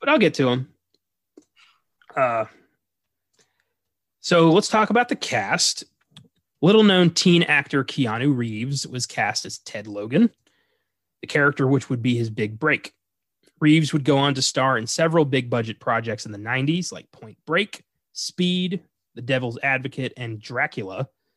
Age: 30-49